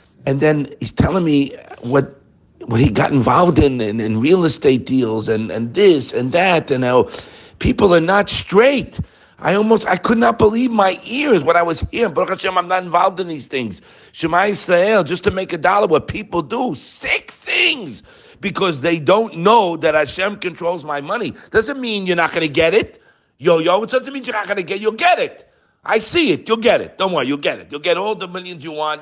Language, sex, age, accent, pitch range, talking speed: English, male, 50-69, American, 135-200 Hz, 225 wpm